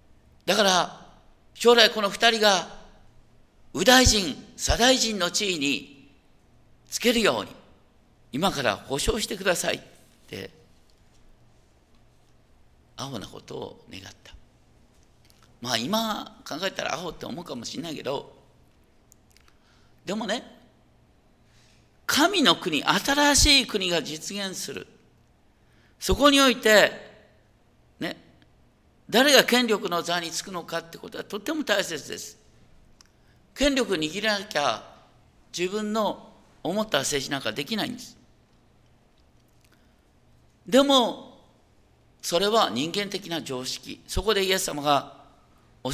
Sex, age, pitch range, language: male, 50-69, 155-230 Hz, Japanese